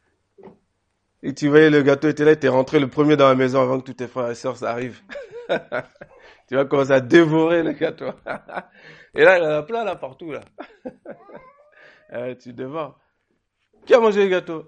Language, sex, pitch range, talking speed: French, male, 105-155 Hz, 190 wpm